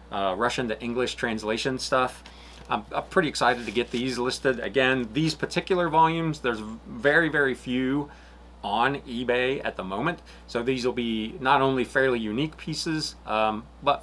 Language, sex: English, male